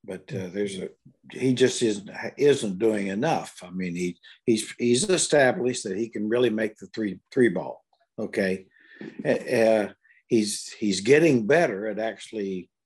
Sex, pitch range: male, 95-115 Hz